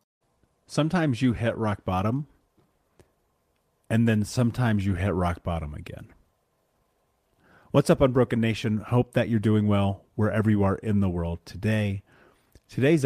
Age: 30-49